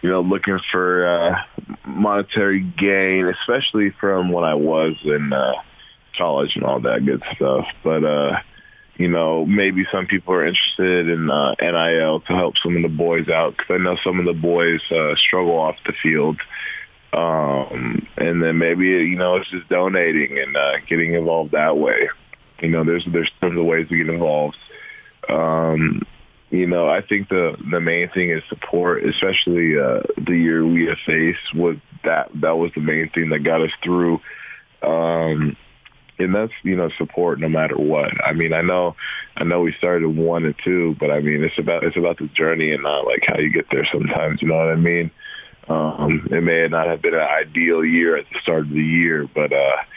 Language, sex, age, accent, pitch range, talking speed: English, male, 20-39, American, 80-90 Hz, 195 wpm